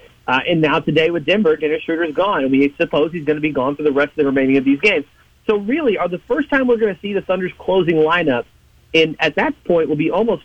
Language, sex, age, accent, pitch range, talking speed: English, male, 40-59, American, 145-195 Hz, 275 wpm